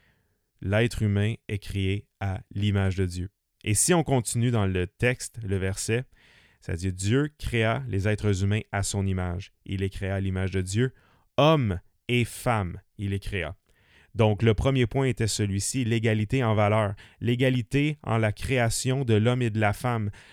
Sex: male